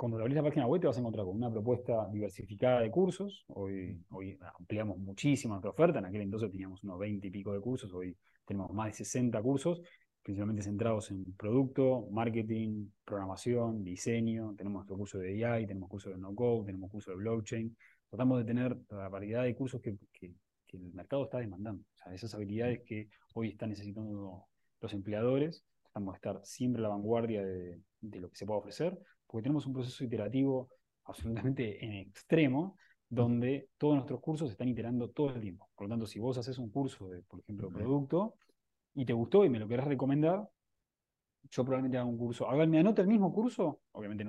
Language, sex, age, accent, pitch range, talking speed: Spanish, male, 20-39, Argentinian, 100-130 Hz, 200 wpm